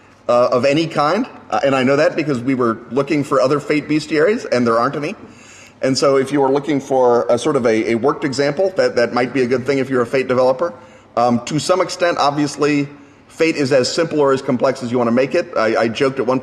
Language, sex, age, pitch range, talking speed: English, male, 30-49, 120-150 Hz, 255 wpm